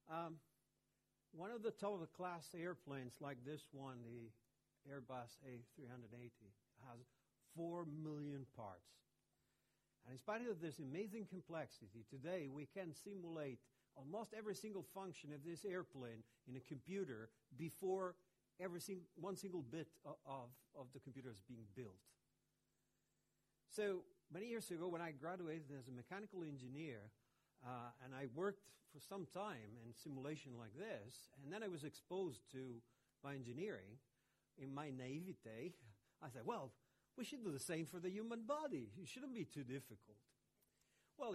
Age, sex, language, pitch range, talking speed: 60-79, male, English, 125-180 Hz, 145 wpm